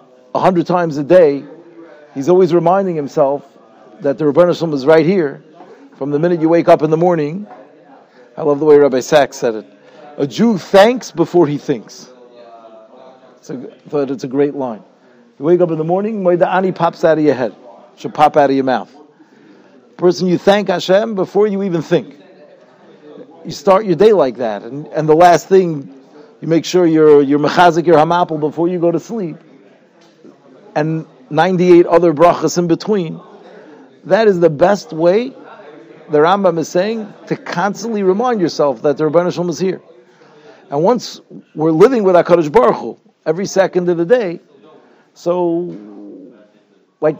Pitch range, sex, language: 145-180 Hz, male, English